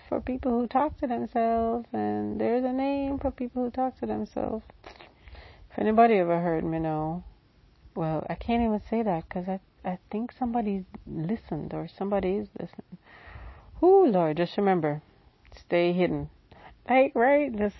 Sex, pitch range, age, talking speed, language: female, 155-215 Hz, 40-59, 165 wpm, English